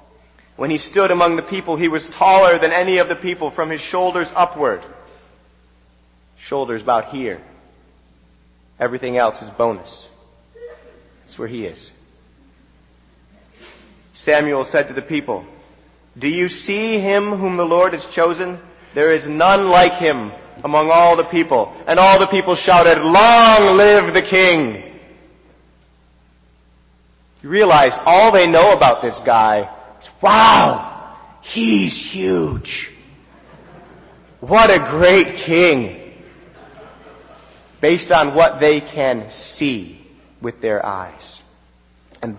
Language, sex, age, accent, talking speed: English, male, 40-59, American, 120 wpm